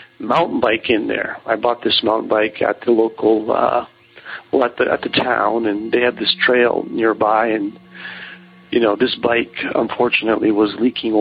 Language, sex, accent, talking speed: English, male, American, 175 wpm